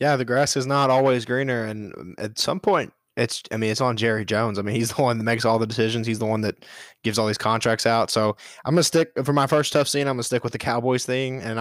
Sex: male